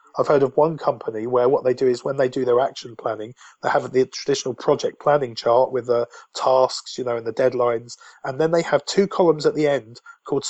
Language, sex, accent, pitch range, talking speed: English, male, British, 130-165 Hz, 235 wpm